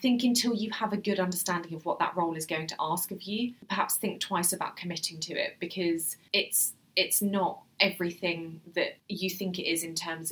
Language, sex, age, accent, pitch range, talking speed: English, female, 20-39, British, 165-210 Hz, 210 wpm